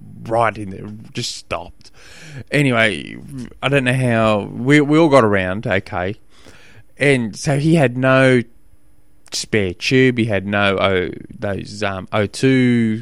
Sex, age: male, 20-39